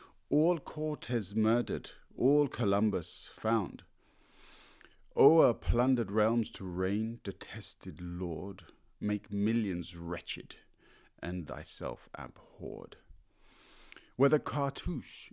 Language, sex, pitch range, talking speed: English, male, 90-120 Hz, 80 wpm